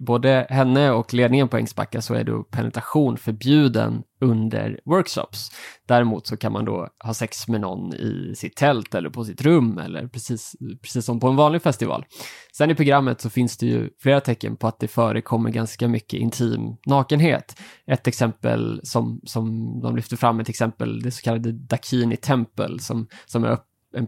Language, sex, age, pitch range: Swedish, male, 20-39, 115-130 Hz